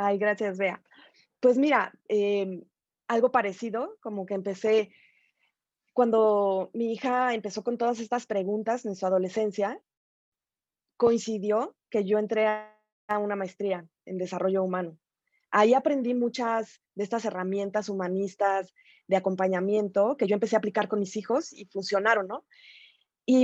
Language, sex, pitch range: Spanish, female, 195-230 Hz